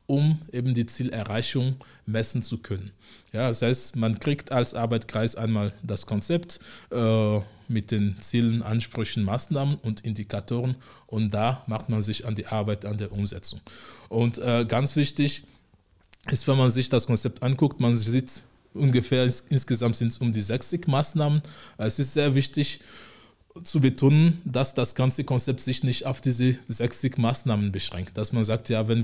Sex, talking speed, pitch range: male, 165 wpm, 110-135 Hz